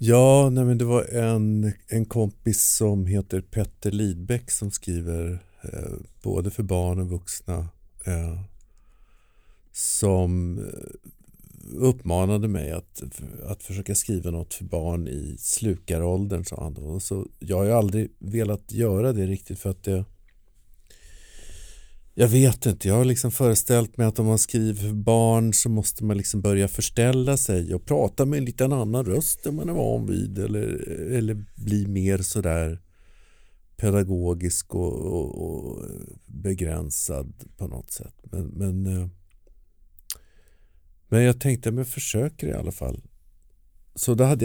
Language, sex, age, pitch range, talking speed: Swedish, male, 50-69, 85-115 Hz, 140 wpm